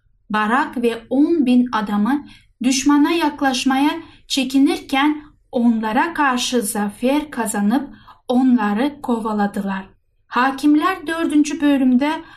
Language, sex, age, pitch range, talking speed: Turkish, female, 10-29, 235-290 Hz, 80 wpm